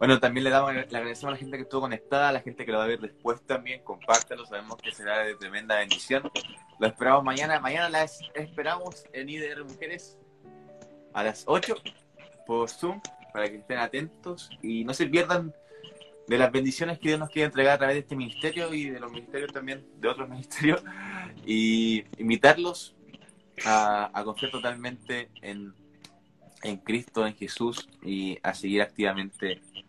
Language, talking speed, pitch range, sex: Spanish, 175 wpm, 110-135 Hz, male